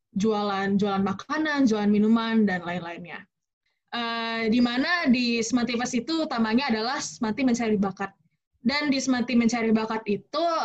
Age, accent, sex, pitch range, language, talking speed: 20-39, native, female, 205-240 Hz, Indonesian, 130 wpm